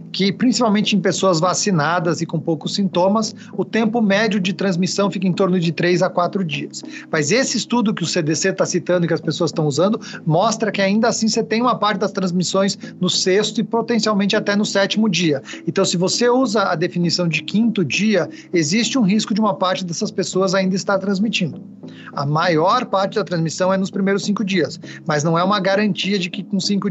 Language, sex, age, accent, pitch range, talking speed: Portuguese, male, 40-59, Brazilian, 175-215 Hz, 205 wpm